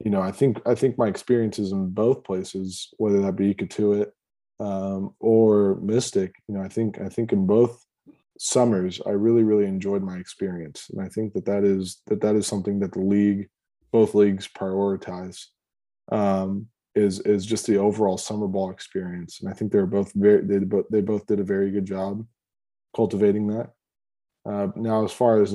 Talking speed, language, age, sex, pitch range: 190 wpm, English, 20-39, male, 95-110 Hz